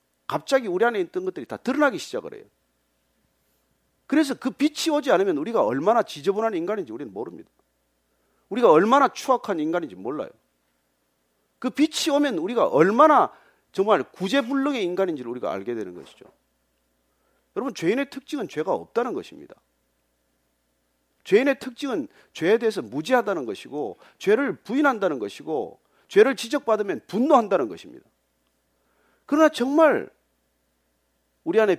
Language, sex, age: Korean, male, 40-59